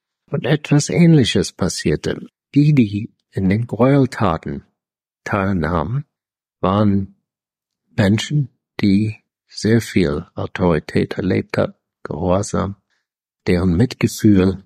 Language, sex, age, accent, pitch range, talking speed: German, male, 60-79, German, 95-125 Hz, 85 wpm